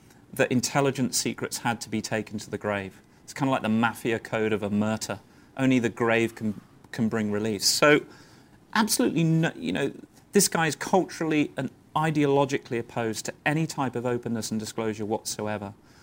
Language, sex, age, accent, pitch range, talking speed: English, male, 30-49, British, 110-140 Hz, 170 wpm